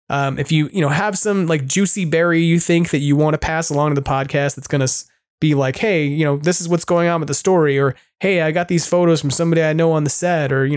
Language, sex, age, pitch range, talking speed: English, male, 20-39, 145-170 Hz, 290 wpm